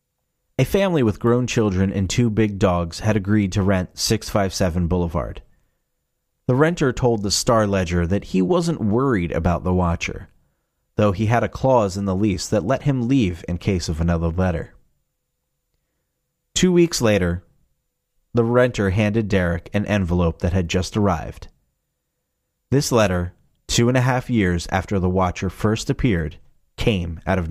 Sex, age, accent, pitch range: male, 30-49, American, 90-115 Hz